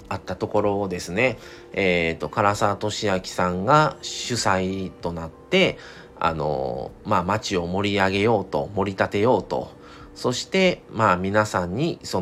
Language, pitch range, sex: Japanese, 90-115 Hz, male